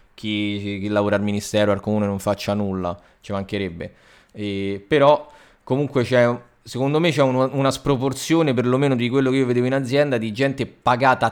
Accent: native